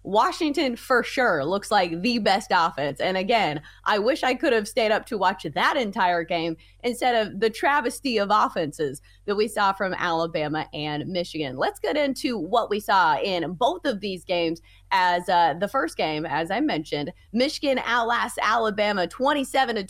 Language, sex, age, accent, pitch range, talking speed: English, female, 30-49, American, 175-245 Hz, 175 wpm